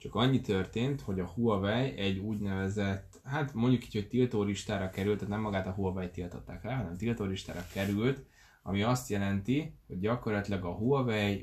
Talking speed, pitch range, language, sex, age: 165 wpm, 95-115 Hz, Hungarian, male, 10-29